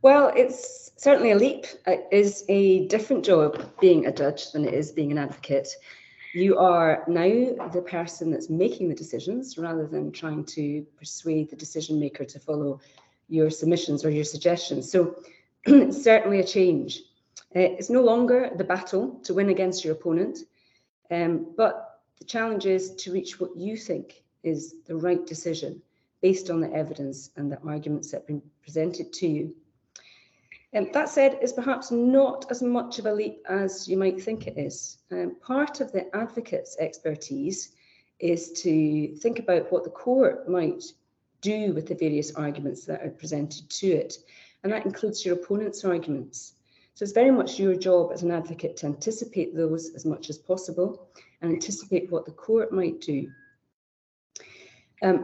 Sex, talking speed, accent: female, 170 wpm, British